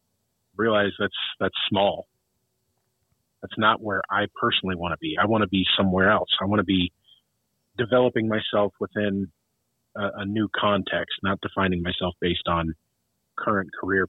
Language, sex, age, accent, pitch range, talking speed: English, male, 40-59, American, 95-110 Hz, 155 wpm